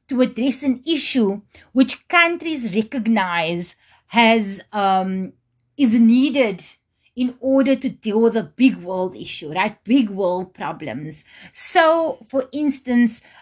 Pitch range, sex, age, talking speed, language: 185-260 Hz, female, 30-49, 120 wpm, English